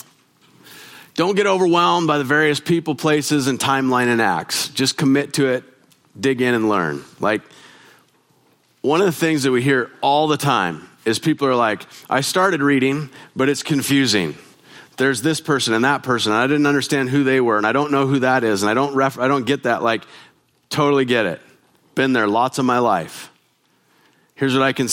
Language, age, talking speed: English, 30-49, 200 wpm